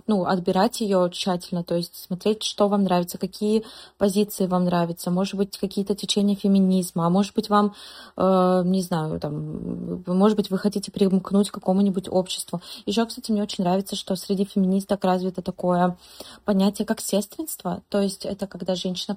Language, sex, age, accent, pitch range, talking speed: Russian, female, 20-39, native, 180-205 Hz, 165 wpm